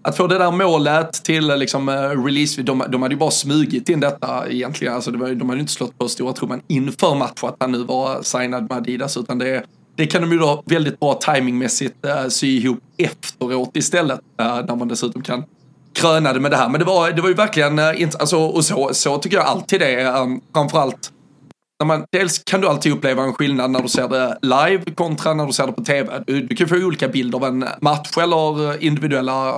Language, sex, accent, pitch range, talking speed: Swedish, male, native, 130-155 Hz, 225 wpm